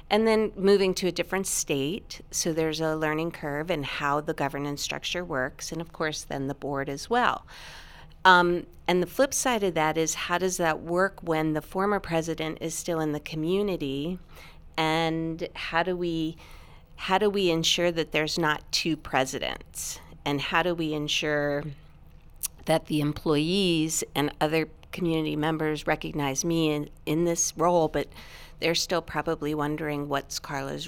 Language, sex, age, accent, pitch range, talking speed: English, female, 40-59, American, 150-180 Hz, 165 wpm